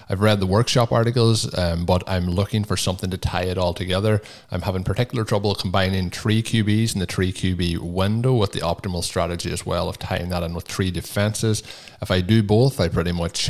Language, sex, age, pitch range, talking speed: English, male, 20-39, 90-105 Hz, 215 wpm